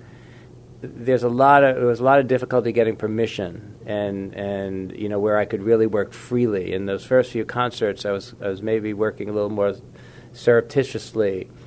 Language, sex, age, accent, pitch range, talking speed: English, male, 40-59, American, 100-120 Hz, 190 wpm